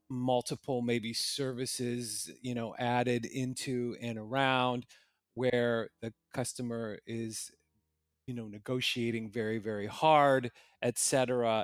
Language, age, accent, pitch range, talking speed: English, 30-49, American, 115-140 Hz, 115 wpm